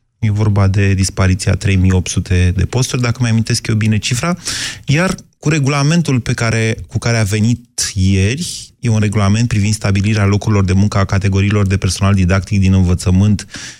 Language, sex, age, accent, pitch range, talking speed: Romanian, male, 30-49, native, 100-125 Hz, 155 wpm